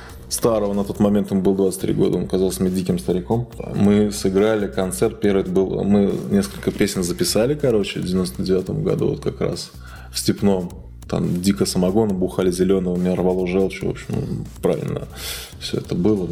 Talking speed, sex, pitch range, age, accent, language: 170 wpm, male, 90-105 Hz, 20-39, native, Russian